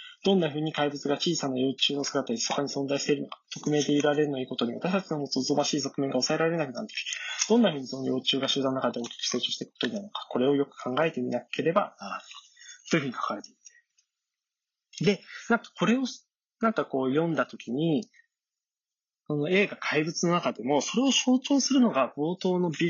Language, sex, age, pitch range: Japanese, male, 20-39, 140-220 Hz